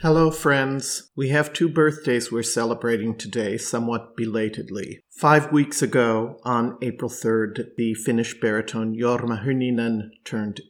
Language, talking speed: English, 130 wpm